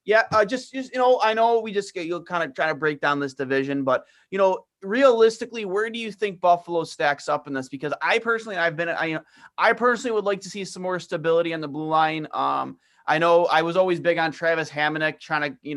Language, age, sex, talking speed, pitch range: English, 30-49, male, 245 wpm, 140-180 Hz